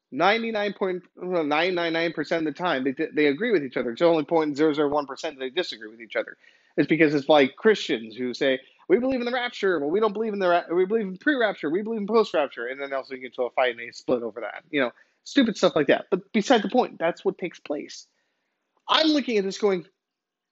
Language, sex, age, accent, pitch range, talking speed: English, male, 30-49, American, 140-215 Hz, 245 wpm